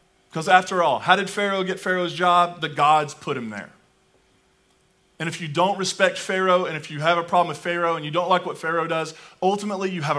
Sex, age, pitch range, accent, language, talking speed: male, 40-59, 140-180 Hz, American, English, 225 wpm